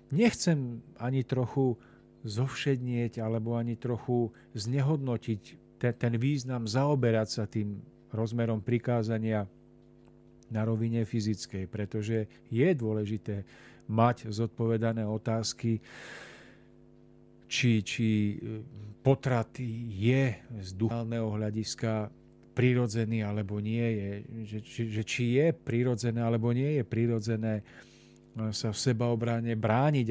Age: 40-59